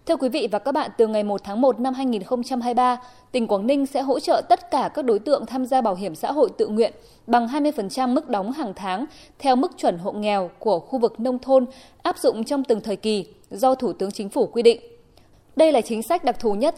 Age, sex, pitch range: 20-39, female, 220-280 Hz